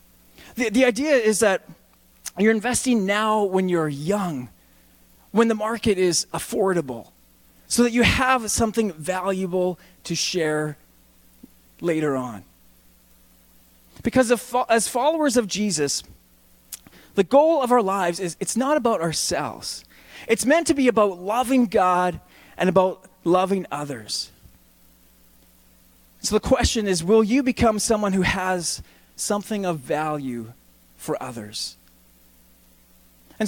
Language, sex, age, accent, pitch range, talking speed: English, male, 20-39, American, 170-240 Hz, 120 wpm